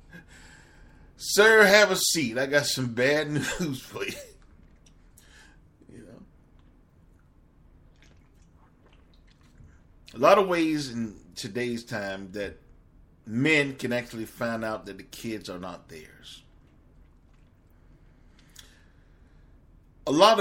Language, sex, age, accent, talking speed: English, male, 50-69, American, 100 wpm